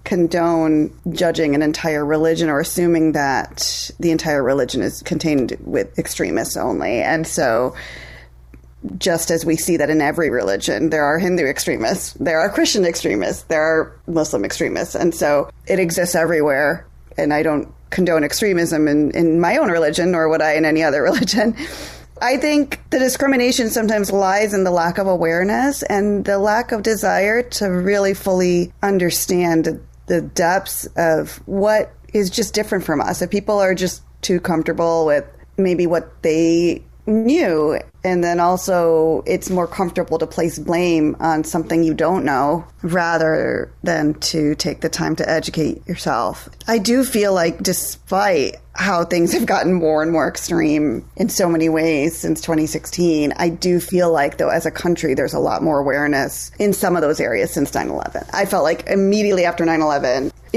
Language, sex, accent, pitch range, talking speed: English, female, American, 160-195 Hz, 165 wpm